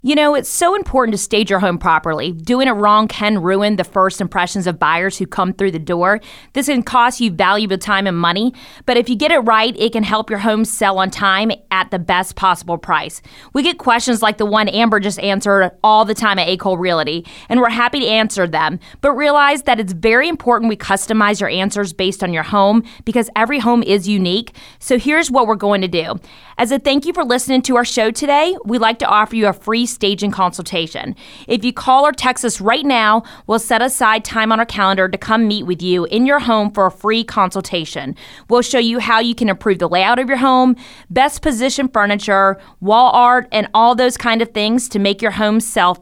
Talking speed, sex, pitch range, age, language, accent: 225 wpm, female, 195-245 Hz, 20-39, English, American